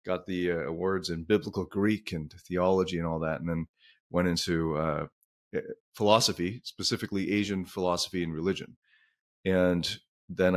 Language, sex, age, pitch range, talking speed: English, male, 30-49, 90-115 Hz, 140 wpm